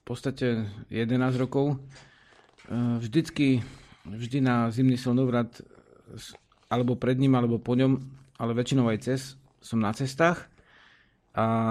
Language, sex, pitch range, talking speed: Slovak, male, 115-130 Hz, 120 wpm